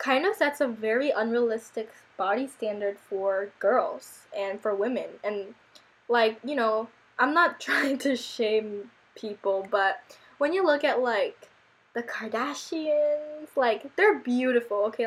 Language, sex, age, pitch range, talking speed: English, female, 10-29, 215-285 Hz, 140 wpm